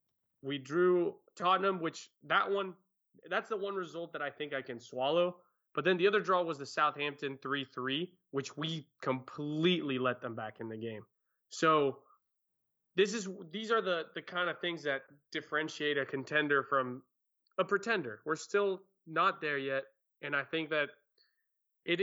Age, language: 20-39, English